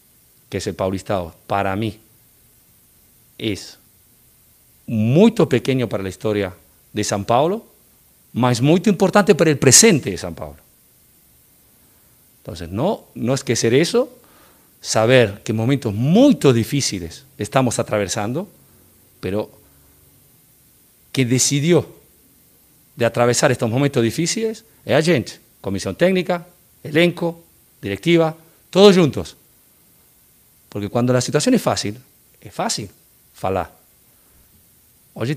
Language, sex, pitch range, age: Portuguese, male, 105-165 Hz, 50-69